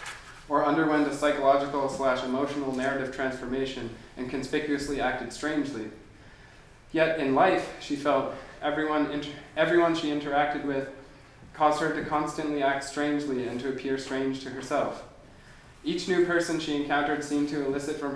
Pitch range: 135-150 Hz